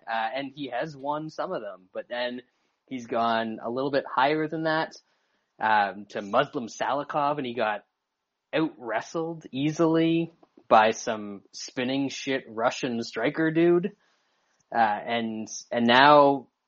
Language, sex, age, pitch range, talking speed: English, male, 20-39, 110-135 Hz, 135 wpm